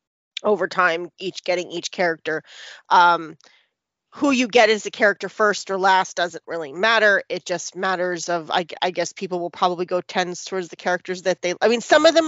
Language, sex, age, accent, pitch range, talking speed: English, female, 30-49, American, 175-210 Hz, 200 wpm